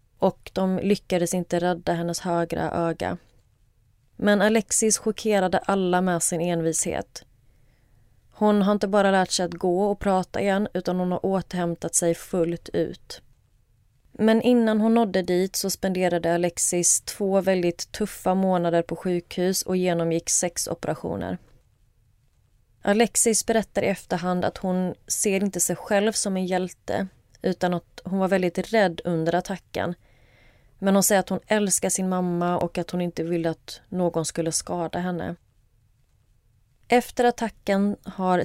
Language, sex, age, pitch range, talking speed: Swedish, female, 20-39, 165-190 Hz, 145 wpm